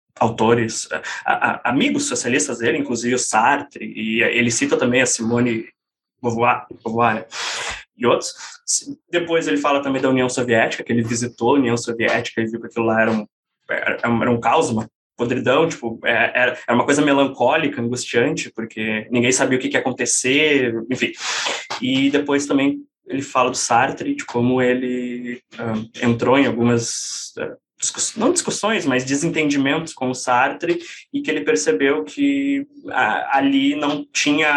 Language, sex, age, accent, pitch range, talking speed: Portuguese, male, 20-39, Brazilian, 120-145 Hz, 160 wpm